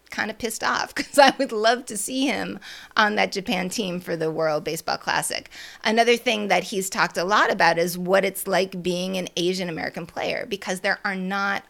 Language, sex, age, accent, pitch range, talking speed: English, female, 30-49, American, 165-210 Hz, 205 wpm